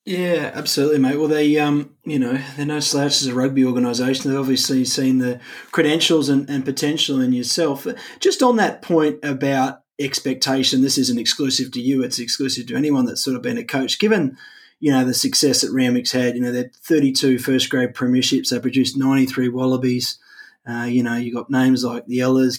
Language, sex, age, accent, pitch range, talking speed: English, male, 20-39, Australian, 125-145 Hz, 190 wpm